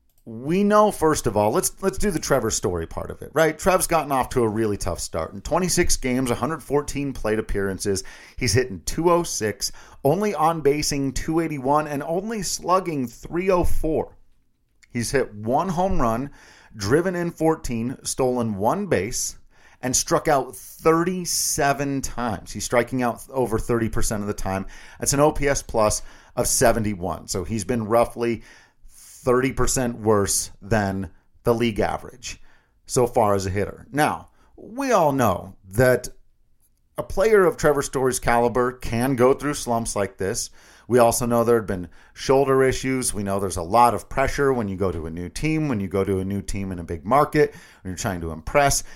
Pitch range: 100-145 Hz